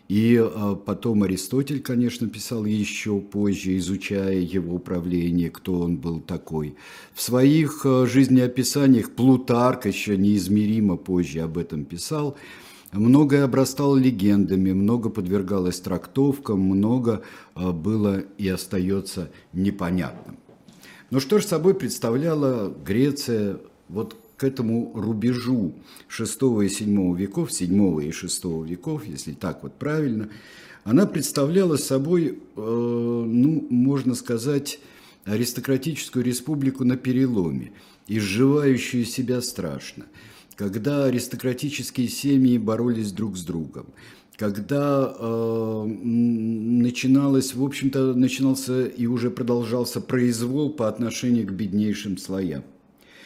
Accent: native